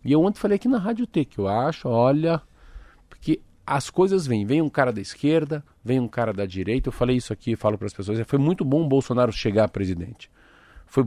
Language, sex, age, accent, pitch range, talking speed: Portuguese, male, 50-69, Brazilian, 110-150 Hz, 235 wpm